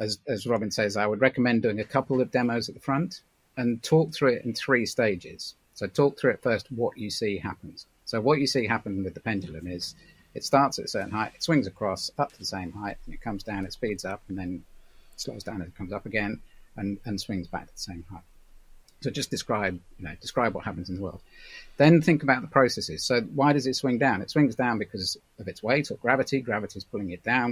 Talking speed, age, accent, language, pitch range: 245 wpm, 40-59, British, English, 95-125 Hz